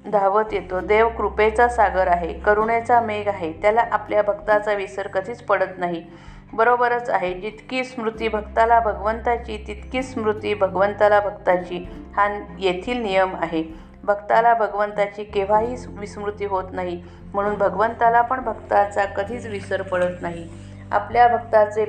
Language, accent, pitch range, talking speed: Marathi, native, 190-215 Hz, 125 wpm